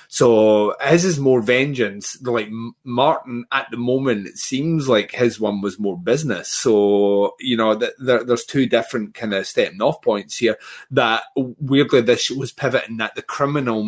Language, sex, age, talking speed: English, male, 30-49, 175 wpm